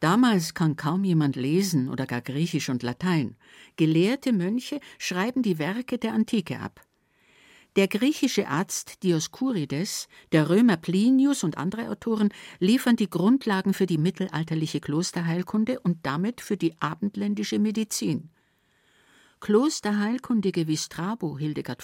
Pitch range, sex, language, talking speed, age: 150-205 Hz, female, German, 125 wpm, 60-79